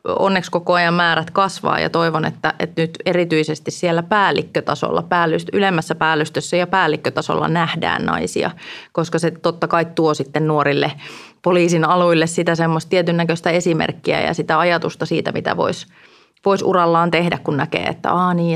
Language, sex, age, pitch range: Finnish, female, 30-49, 155-175 Hz